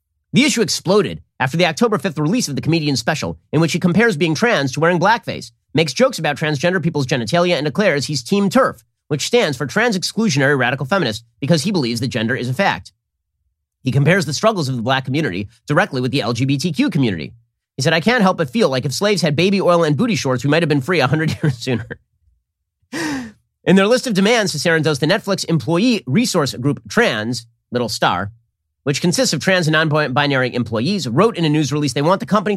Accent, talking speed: American, 210 wpm